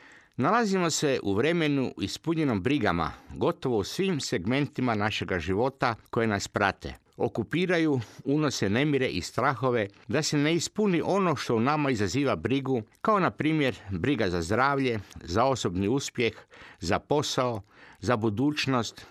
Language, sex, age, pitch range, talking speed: Croatian, male, 50-69, 110-150 Hz, 135 wpm